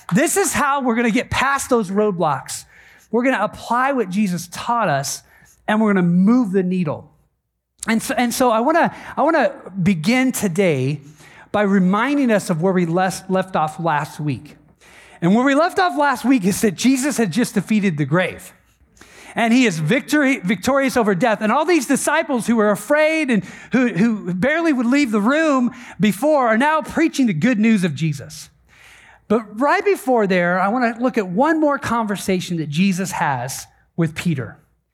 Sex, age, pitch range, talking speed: male, 40-59, 180-255 Hz, 190 wpm